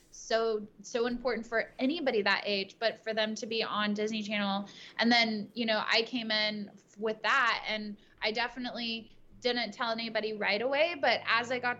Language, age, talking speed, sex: English, 20-39, 185 wpm, female